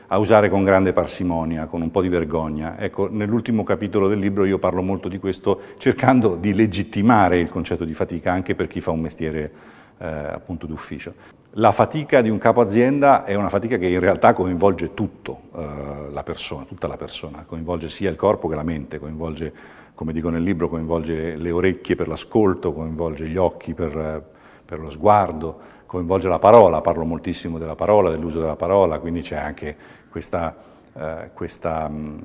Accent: native